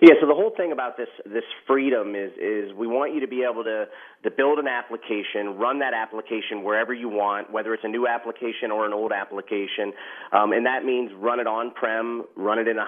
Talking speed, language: 235 wpm, English